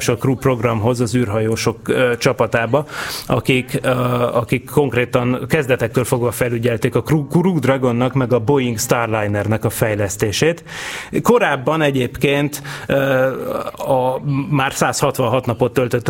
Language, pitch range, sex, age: Hungarian, 120-140 Hz, male, 30-49